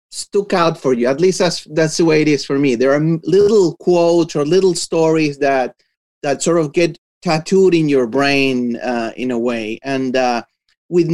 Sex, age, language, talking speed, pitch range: male, 30-49, English, 200 wpm, 140-180 Hz